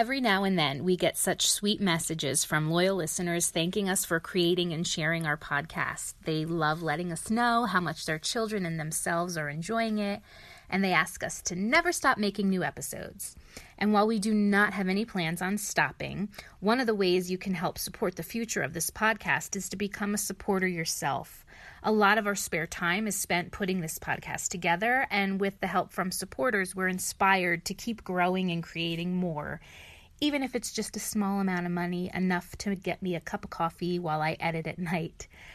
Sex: female